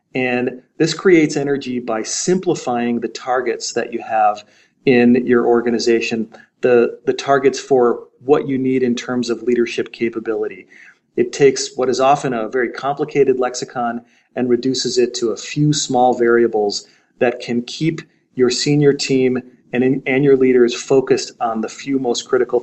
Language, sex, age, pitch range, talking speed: English, male, 30-49, 120-155 Hz, 155 wpm